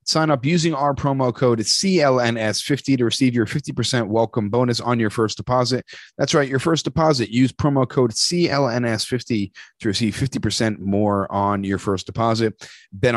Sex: male